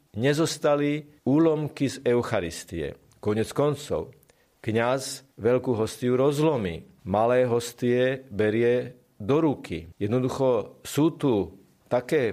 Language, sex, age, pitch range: Slovak, male, 40-59, 115-145 Hz